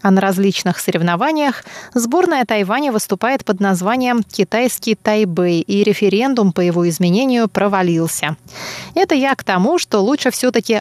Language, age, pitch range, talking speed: Russian, 20-39, 185-240 Hz, 135 wpm